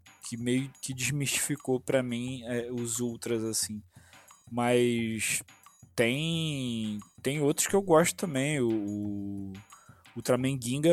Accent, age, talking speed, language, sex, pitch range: Brazilian, 20-39, 120 wpm, Portuguese, male, 115-155 Hz